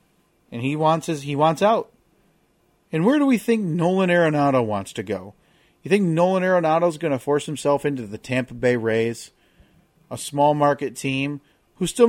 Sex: male